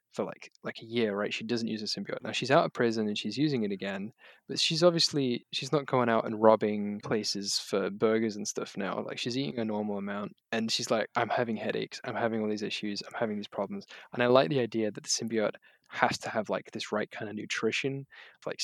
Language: English